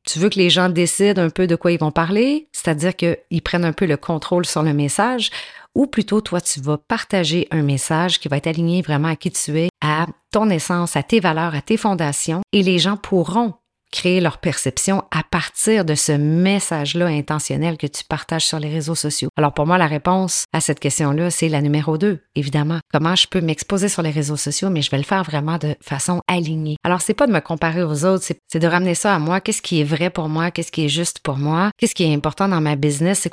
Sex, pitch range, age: female, 150-180 Hz, 30-49